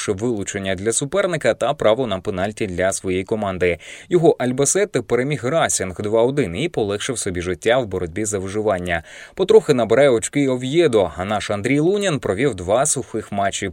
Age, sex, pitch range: 20-39, male, 105-135 Hz